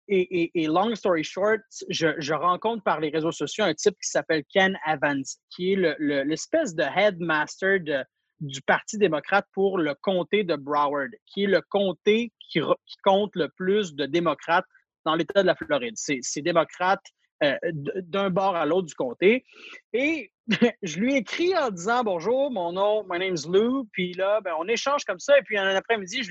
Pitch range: 160-220 Hz